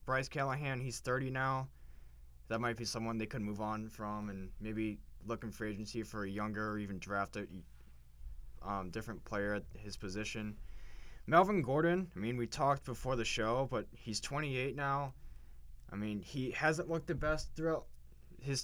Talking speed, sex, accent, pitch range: 170 wpm, male, American, 100-125 Hz